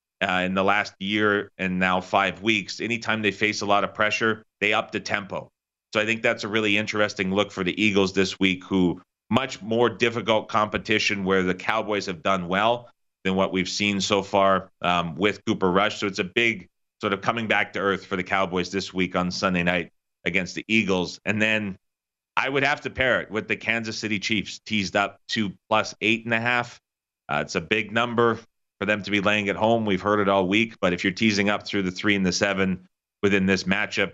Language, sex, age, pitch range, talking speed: English, male, 30-49, 95-110 Hz, 225 wpm